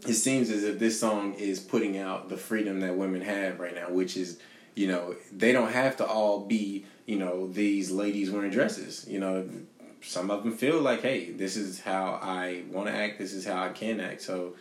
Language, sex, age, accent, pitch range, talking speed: English, male, 20-39, American, 95-105 Hz, 220 wpm